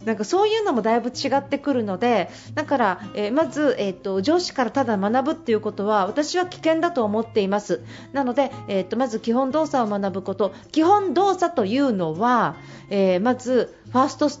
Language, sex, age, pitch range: Japanese, female, 40-59, 210-300 Hz